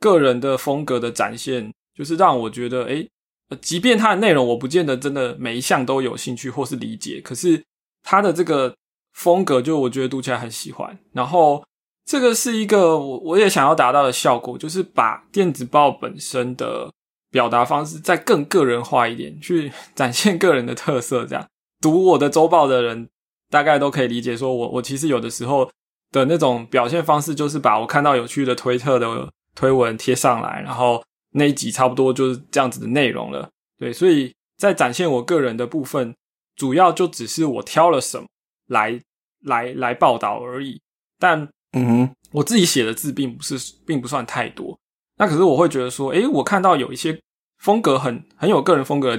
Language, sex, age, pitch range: Chinese, male, 20-39, 125-155 Hz